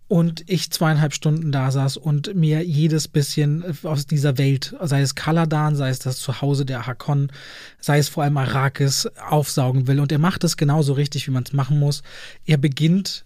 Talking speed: 190 wpm